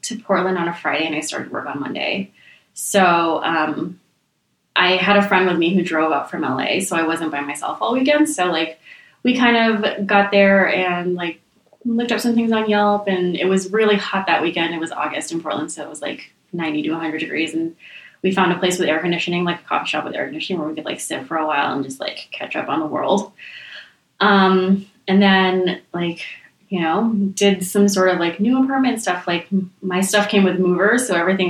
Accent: American